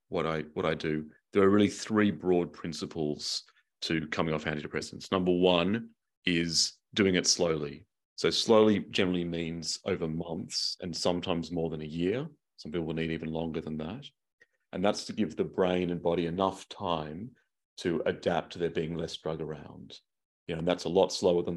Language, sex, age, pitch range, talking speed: English, male, 30-49, 80-95 Hz, 185 wpm